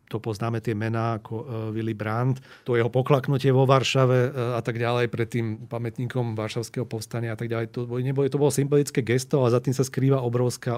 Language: Slovak